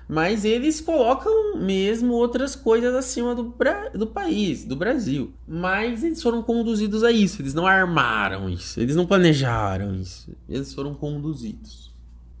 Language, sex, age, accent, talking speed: Portuguese, male, 20-39, Brazilian, 140 wpm